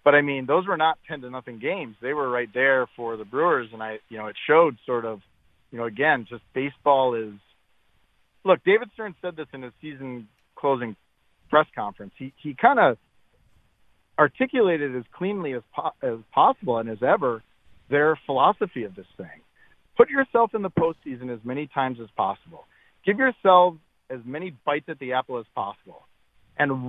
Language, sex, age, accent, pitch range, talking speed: English, male, 40-59, American, 120-165 Hz, 185 wpm